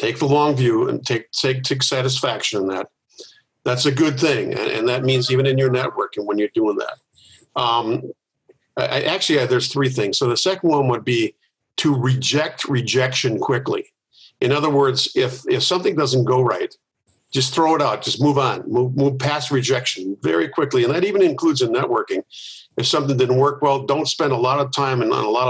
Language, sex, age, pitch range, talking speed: English, male, 50-69, 125-155 Hz, 205 wpm